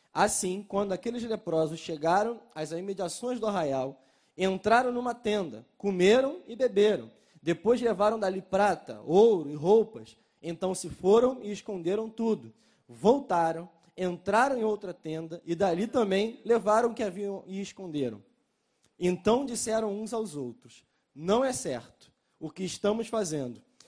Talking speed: 135 wpm